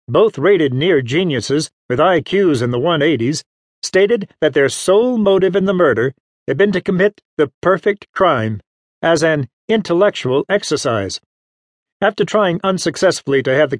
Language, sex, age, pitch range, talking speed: English, male, 50-69, 135-190 Hz, 145 wpm